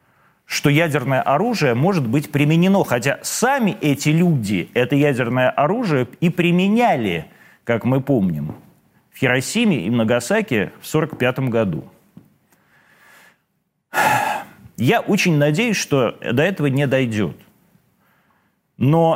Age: 40-59